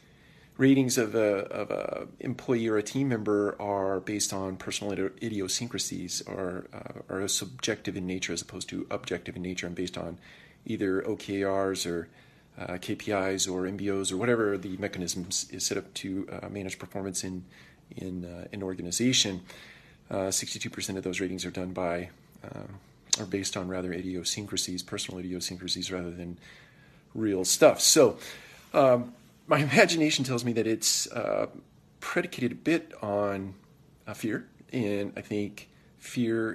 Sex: male